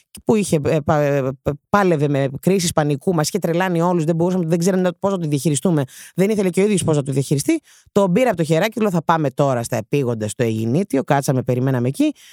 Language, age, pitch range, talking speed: Greek, 30-49, 150-220 Hz, 200 wpm